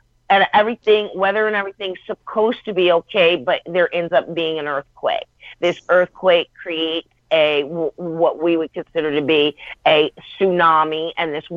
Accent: American